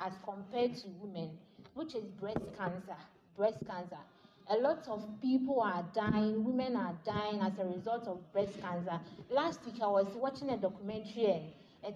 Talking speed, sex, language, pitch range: 165 wpm, female, English, 195-260 Hz